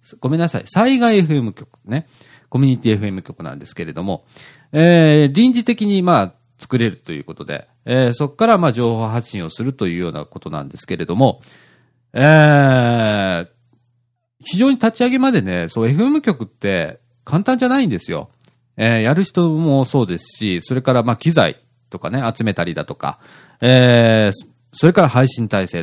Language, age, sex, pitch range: Japanese, 40-59, male, 110-170 Hz